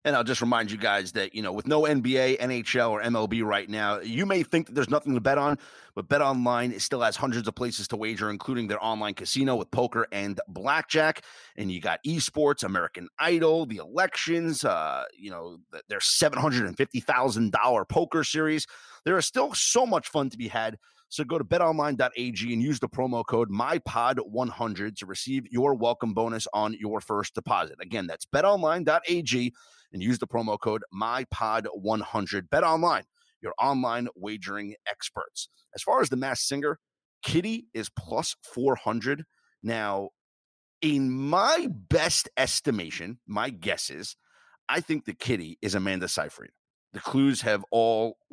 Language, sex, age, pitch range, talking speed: English, male, 30-49, 110-145 Hz, 160 wpm